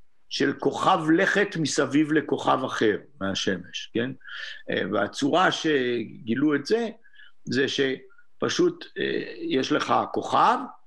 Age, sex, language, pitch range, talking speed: 50-69, male, Hebrew, 135-185 Hz, 95 wpm